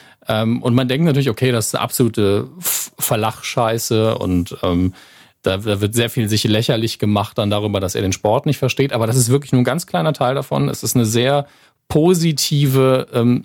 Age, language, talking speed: 40-59, German, 190 wpm